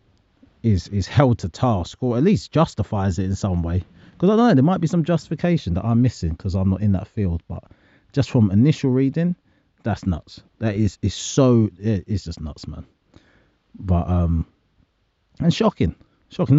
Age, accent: 30-49, British